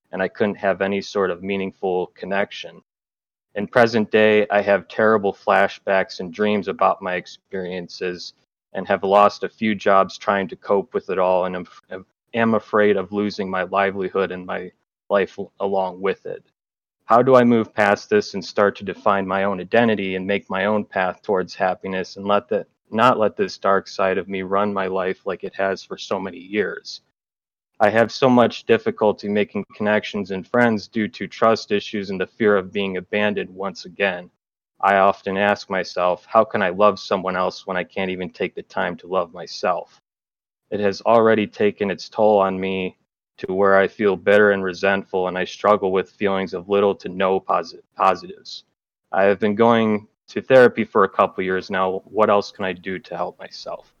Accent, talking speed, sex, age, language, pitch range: American, 190 wpm, male, 30-49, English, 95-105 Hz